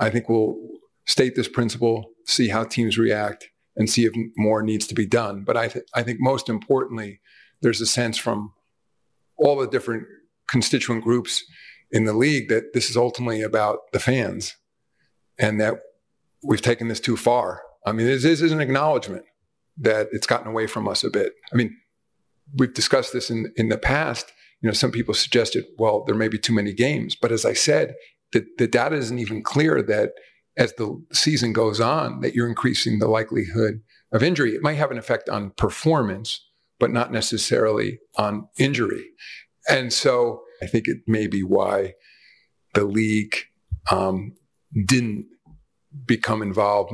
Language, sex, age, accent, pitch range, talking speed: English, male, 40-59, American, 110-125 Hz, 170 wpm